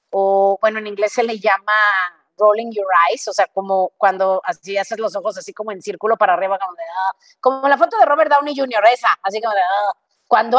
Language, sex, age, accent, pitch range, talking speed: Spanish, female, 30-49, Mexican, 185-225 Hz, 225 wpm